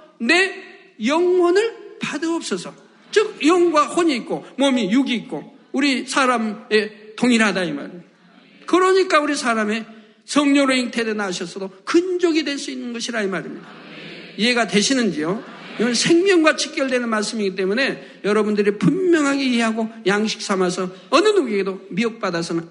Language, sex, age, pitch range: Korean, male, 50-69, 200-260 Hz